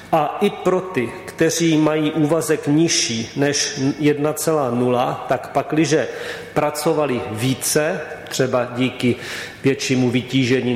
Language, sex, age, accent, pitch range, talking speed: Czech, male, 40-59, native, 130-145 Hz, 100 wpm